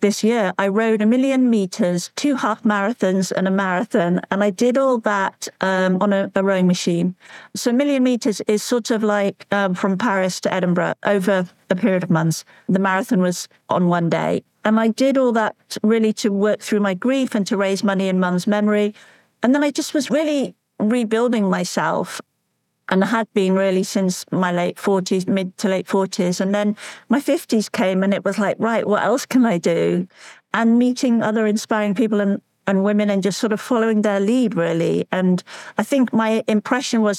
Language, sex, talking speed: English, female, 200 wpm